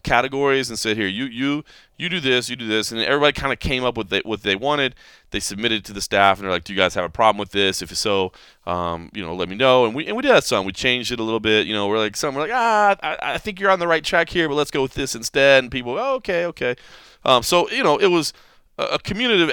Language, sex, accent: English, male, American